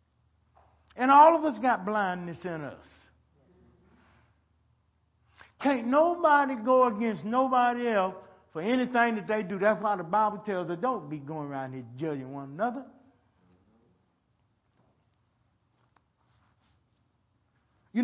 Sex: male